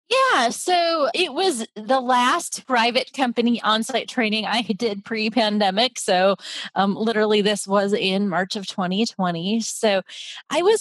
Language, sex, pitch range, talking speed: English, female, 185-230 Hz, 140 wpm